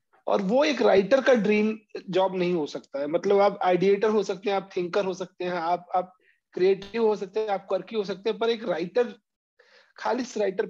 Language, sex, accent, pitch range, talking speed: Hindi, male, native, 185-215 Hz, 215 wpm